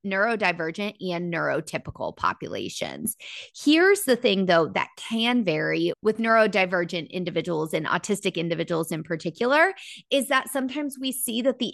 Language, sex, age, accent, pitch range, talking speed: English, female, 30-49, American, 180-250 Hz, 135 wpm